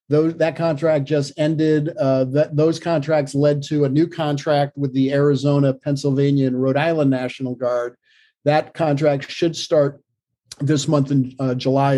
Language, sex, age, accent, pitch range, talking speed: English, male, 50-69, American, 135-150 Hz, 150 wpm